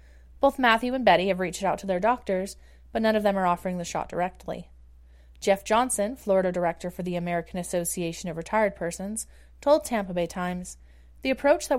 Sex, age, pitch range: female, 30-49, 170-205 Hz